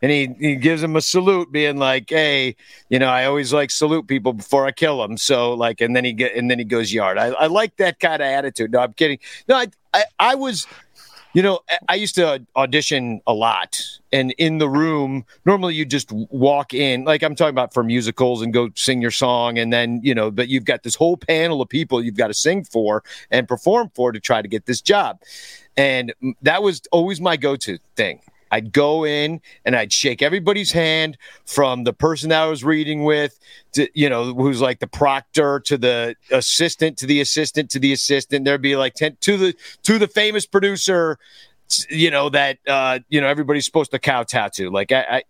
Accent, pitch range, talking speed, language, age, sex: American, 130-165 Hz, 215 wpm, English, 50-69, male